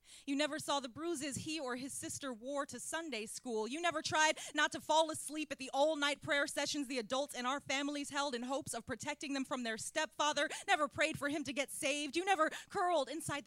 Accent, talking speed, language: American, 225 wpm, English